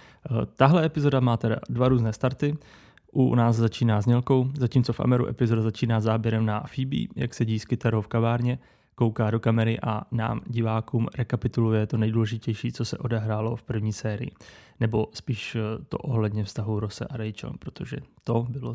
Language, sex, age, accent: Czech, male, 20-39, native